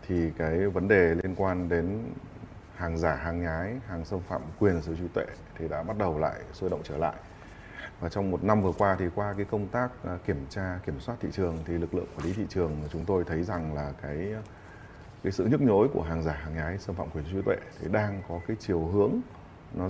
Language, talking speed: Vietnamese, 245 wpm